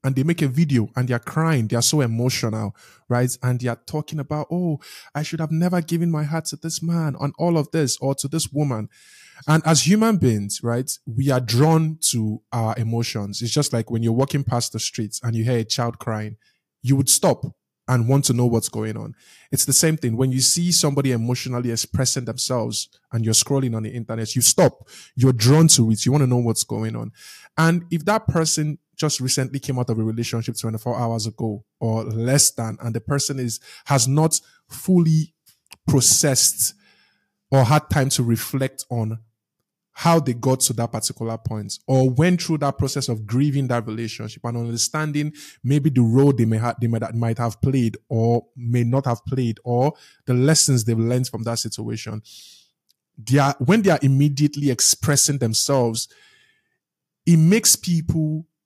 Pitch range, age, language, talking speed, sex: 115-150 Hz, 20-39, English, 190 wpm, male